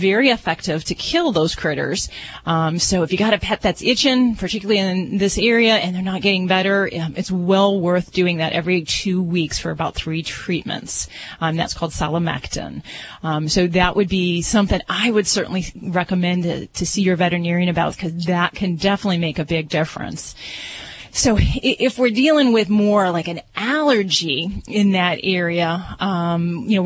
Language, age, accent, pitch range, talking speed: English, 30-49, American, 175-215 Hz, 175 wpm